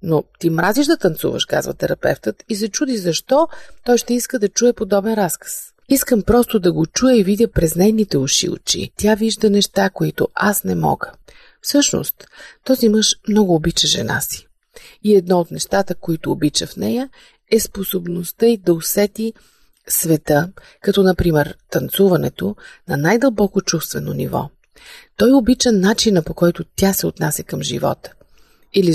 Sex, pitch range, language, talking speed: female, 175-230 Hz, Bulgarian, 155 wpm